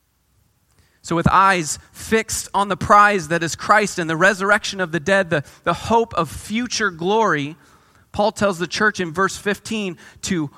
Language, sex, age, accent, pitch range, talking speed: English, male, 30-49, American, 145-200 Hz, 170 wpm